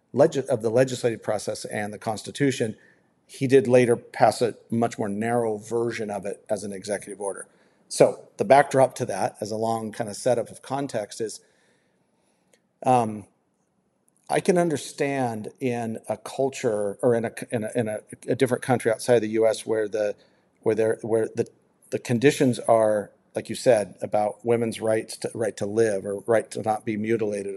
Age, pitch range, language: 40-59, 110-130 Hz, English